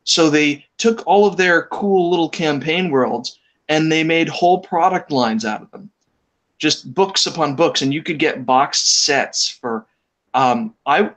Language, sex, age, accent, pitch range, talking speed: English, male, 30-49, American, 130-160 Hz, 170 wpm